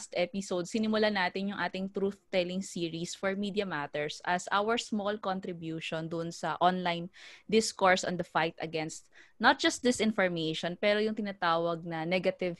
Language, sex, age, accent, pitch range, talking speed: Filipino, female, 20-39, native, 165-195 Hz, 150 wpm